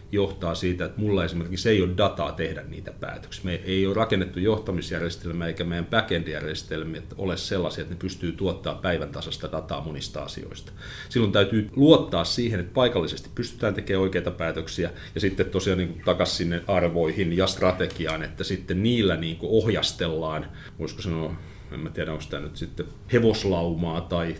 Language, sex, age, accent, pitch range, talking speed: Finnish, male, 30-49, native, 85-100 Hz, 160 wpm